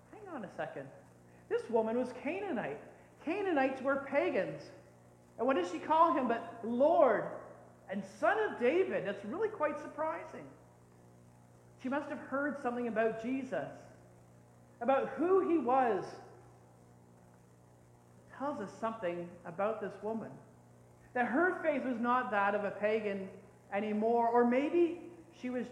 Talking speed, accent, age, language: 135 wpm, American, 40-59, English